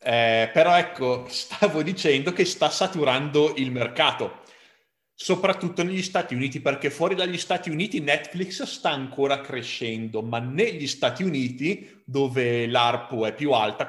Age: 30-49